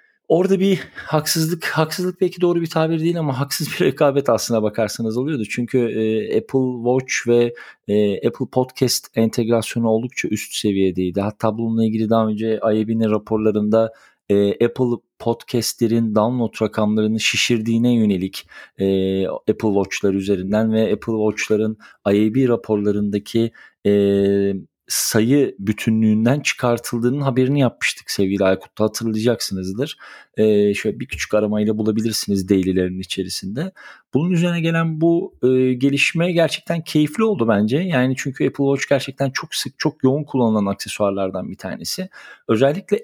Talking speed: 130 wpm